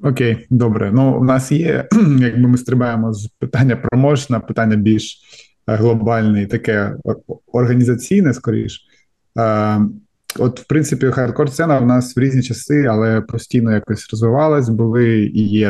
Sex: male